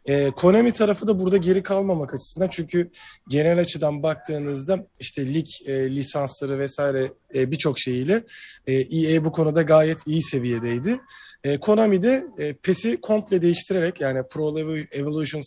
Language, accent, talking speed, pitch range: Turkish, native, 140 wpm, 140-180 Hz